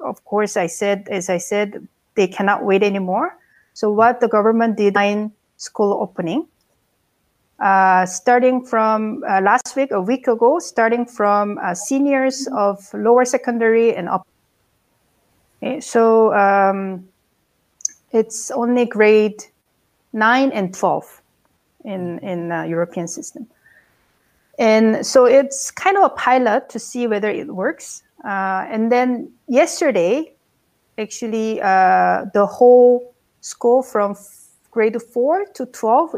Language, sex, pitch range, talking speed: English, female, 200-245 Hz, 130 wpm